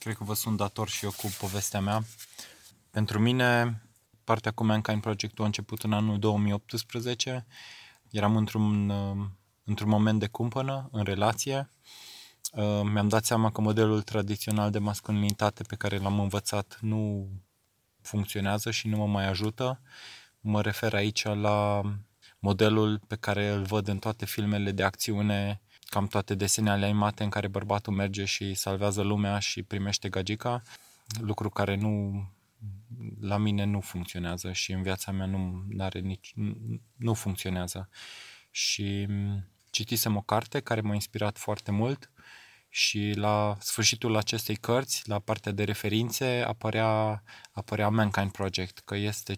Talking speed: 140 wpm